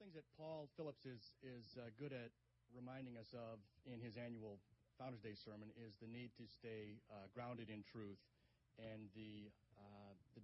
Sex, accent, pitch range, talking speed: male, American, 110-130 Hz, 170 wpm